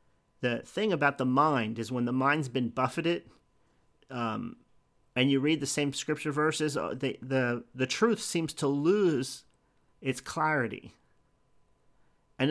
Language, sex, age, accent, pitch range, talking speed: English, male, 40-59, American, 130-165 Hz, 135 wpm